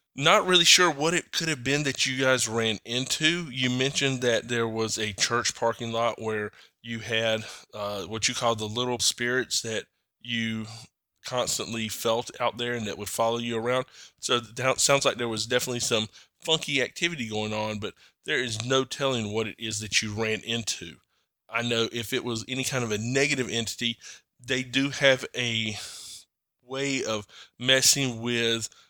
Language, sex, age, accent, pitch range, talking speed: English, male, 20-39, American, 110-130 Hz, 180 wpm